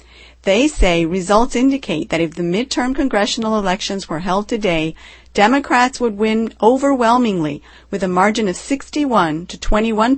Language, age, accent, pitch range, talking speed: English, 40-59, American, 175-225 Hz, 140 wpm